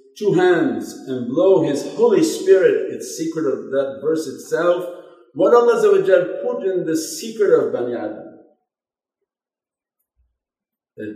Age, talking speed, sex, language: 50-69, 125 wpm, male, English